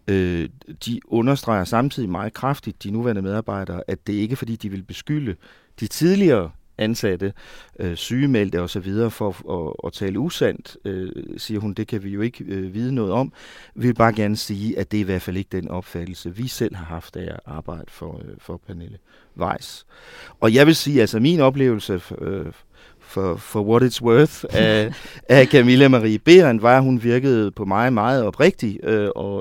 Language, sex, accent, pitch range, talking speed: Danish, male, native, 95-125 Hz, 195 wpm